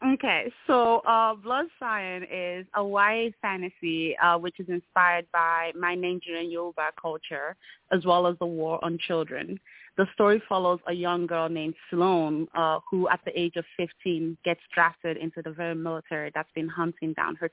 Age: 30-49